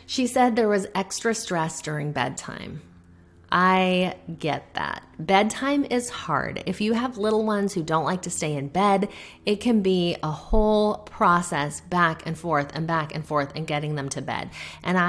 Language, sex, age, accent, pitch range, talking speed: English, female, 30-49, American, 155-200 Hz, 180 wpm